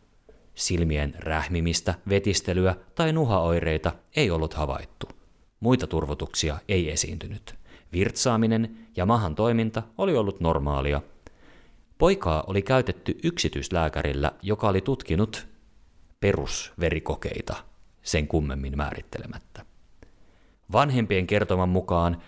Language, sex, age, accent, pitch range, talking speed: Finnish, male, 30-49, native, 75-105 Hz, 90 wpm